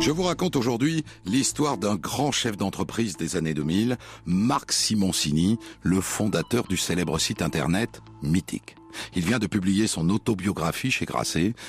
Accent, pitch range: French, 90-135 Hz